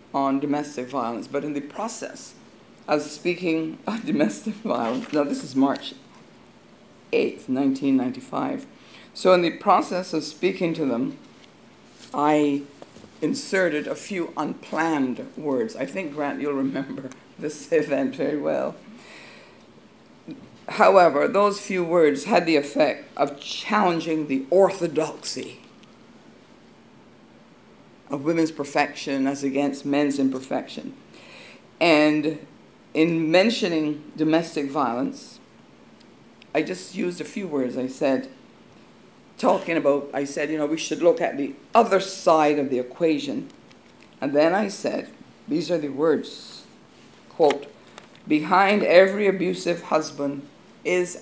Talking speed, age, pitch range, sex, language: 120 wpm, 60-79, 145-190 Hz, female, English